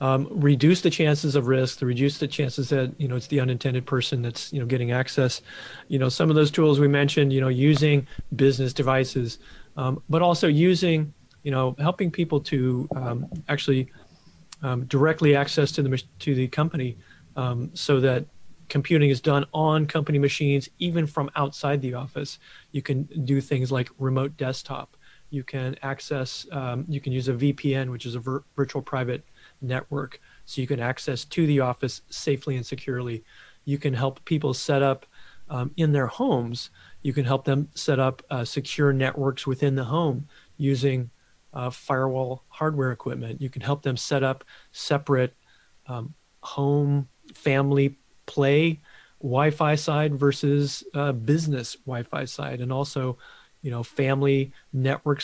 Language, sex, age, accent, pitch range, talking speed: English, male, 30-49, American, 130-145 Hz, 165 wpm